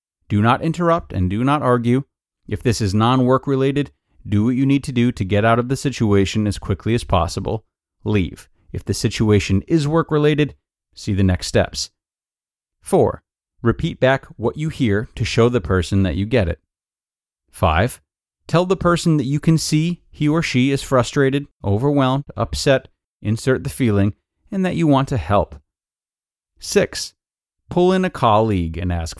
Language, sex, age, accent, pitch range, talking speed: English, male, 30-49, American, 95-140 Hz, 175 wpm